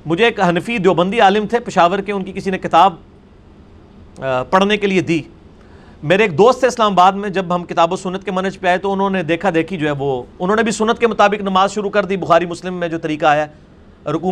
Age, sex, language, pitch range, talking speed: 40-59, male, Urdu, 155-210 Hz, 245 wpm